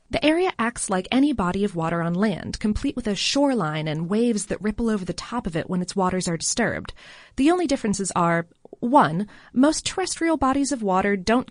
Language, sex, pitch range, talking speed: English, female, 185-265 Hz, 205 wpm